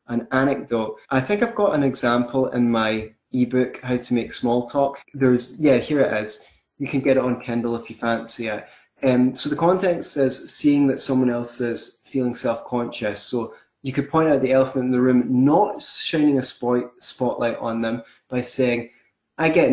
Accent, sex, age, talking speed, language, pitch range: British, male, 20-39, 200 wpm, English, 120-130 Hz